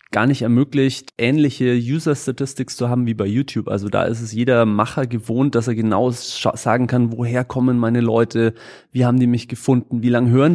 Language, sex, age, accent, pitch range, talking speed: German, male, 30-49, German, 110-125 Hz, 195 wpm